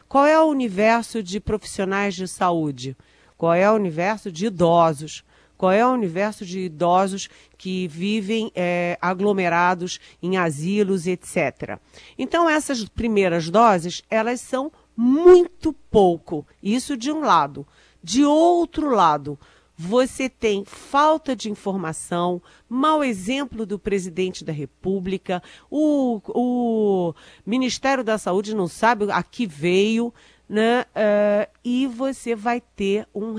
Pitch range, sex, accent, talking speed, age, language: 180-240 Hz, female, Brazilian, 120 wpm, 50-69, Portuguese